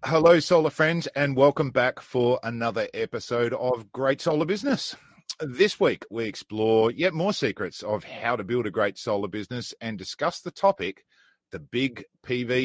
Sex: male